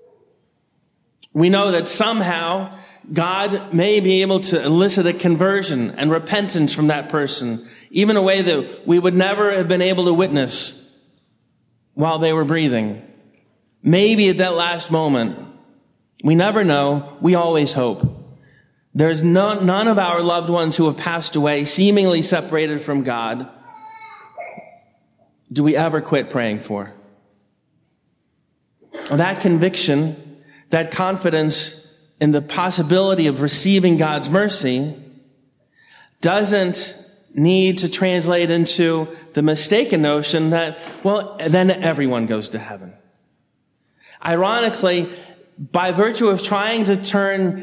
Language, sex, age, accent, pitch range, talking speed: English, male, 30-49, American, 145-185 Hz, 120 wpm